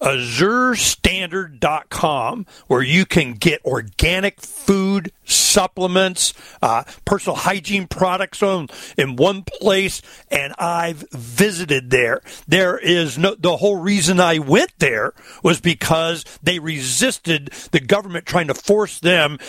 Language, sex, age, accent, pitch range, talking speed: English, male, 50-69, American, 145-190 Hz, 120 wpm